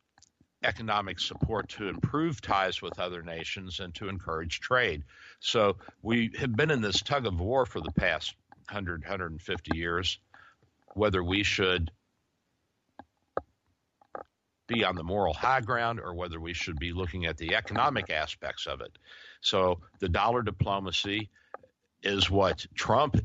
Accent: American